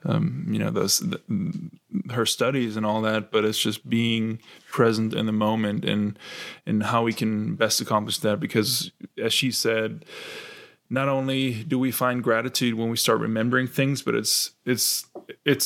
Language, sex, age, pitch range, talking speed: German, male, 20-39, 110-130 Hz, 175 wpm